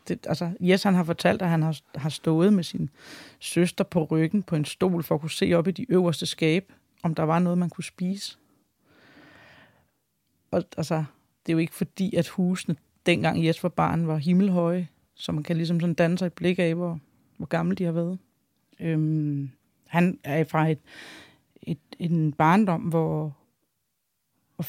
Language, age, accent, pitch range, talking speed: Danish, 30-49, native, 160-185 Hz, 180 wpm